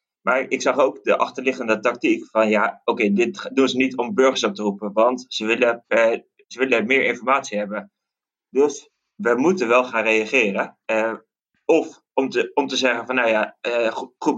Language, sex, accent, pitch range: Dutch, male, Dutch, 115-135 Hz